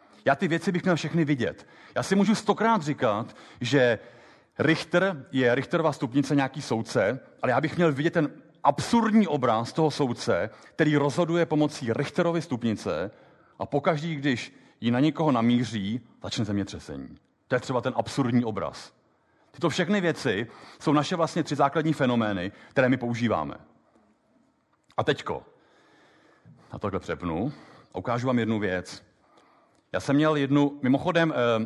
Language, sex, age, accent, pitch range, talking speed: Czech, male, 40-59, native, 115-165 Hz, 140 wpm